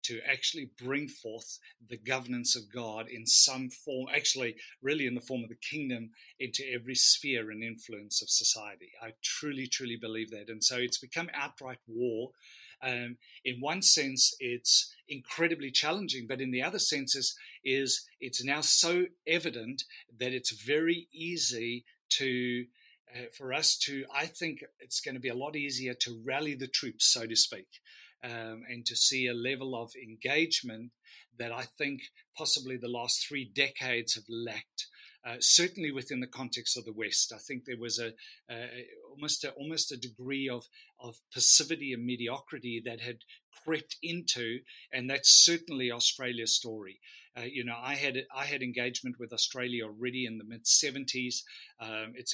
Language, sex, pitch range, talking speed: English, male, 120-135 Hz, 170 wpm